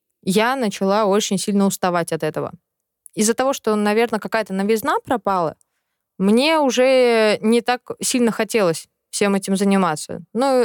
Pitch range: 195-245 Hz